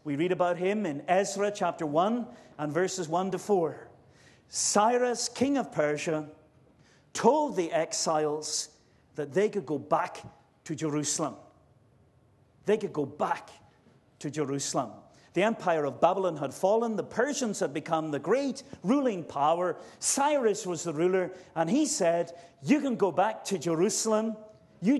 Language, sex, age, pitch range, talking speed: English, male, 50-69, 150-210 Hz, 145 wpm